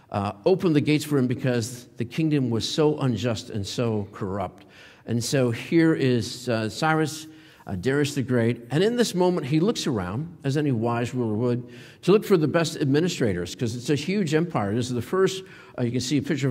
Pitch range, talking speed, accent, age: 120-155 Hz, 210 wpm, American, 50-69